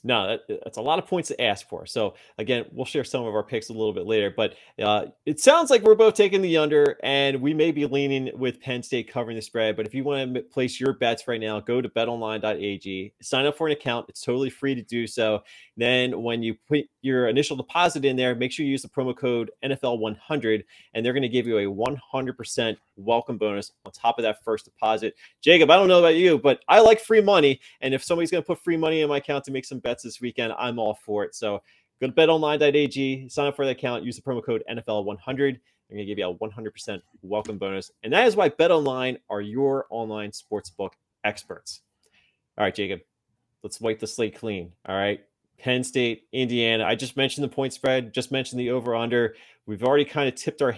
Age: 30-49